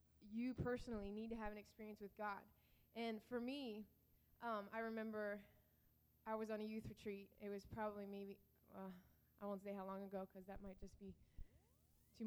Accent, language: American, English